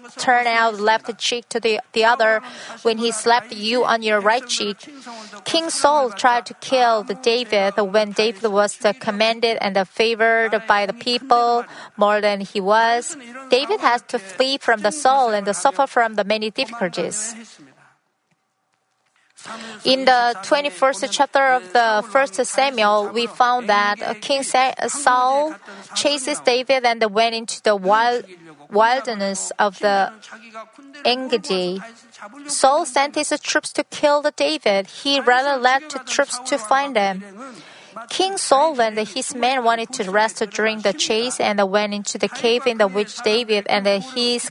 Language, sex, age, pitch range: Korean, female, 30-49, 210-260 Hz